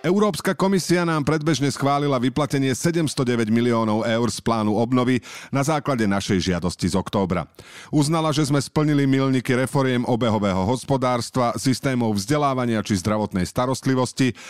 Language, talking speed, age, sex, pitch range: Slovak, 130 wpm, 40-59, male, 105-145 Hz